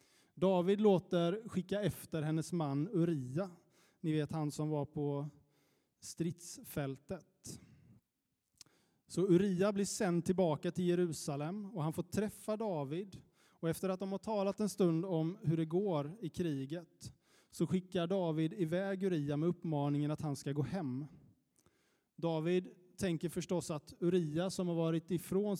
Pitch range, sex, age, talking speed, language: 150-185 Hz, male, 20-39, 145 wpm, Swedish